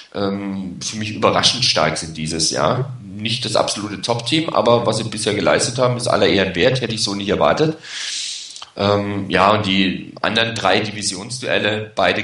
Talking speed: 165 wpm